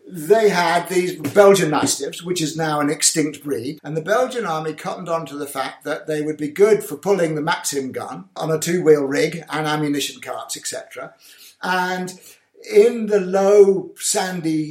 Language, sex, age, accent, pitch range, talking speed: English, male, 50-69, British, 155-200 Hz, 175 wpm